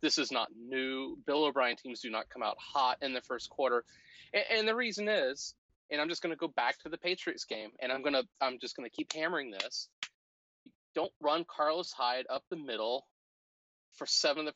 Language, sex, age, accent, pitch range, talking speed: English, male, 30-49, American, 125-165 Hz, 210 wpm